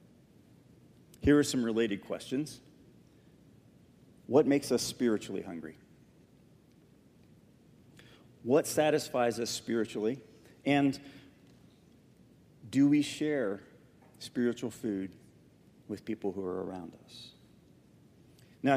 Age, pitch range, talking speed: 40-59, 110-140 Hz, 85 wpm